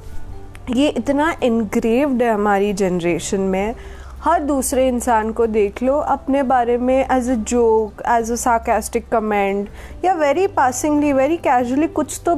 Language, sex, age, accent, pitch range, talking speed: Hindi, female, 20-39, native, 230-290 Hz, 145 wpm